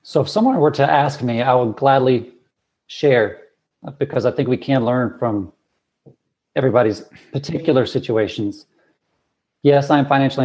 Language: English